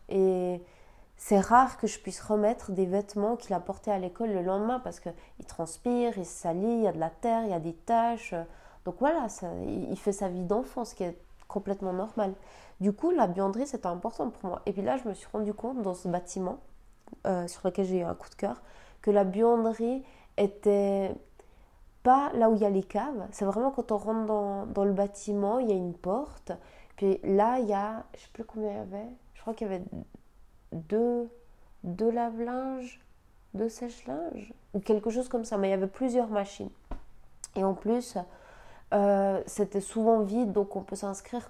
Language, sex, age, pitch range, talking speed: French, female, 20-39, 190-230 Hz, 210 wpm